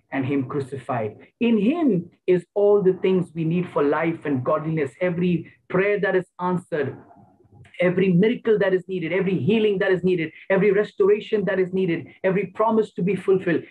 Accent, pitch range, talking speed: Indian, 150-200 Hz, 175 wpm